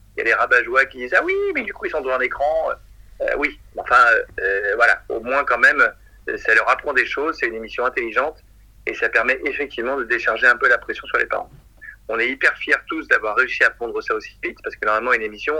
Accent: French